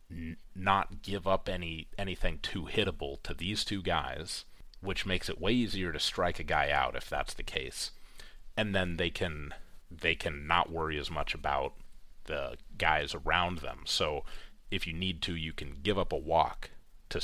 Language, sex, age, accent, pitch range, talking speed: English, male, 30-49, American, 80-100 Hz, 185 wpm